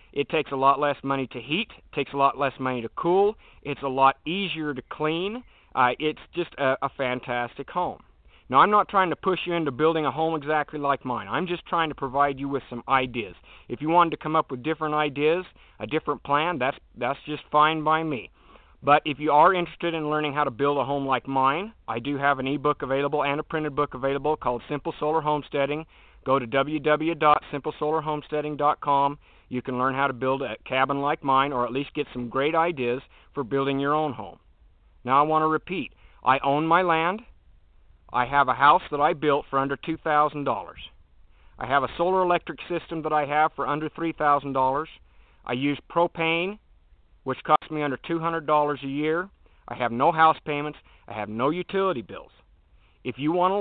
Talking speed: 200 wpm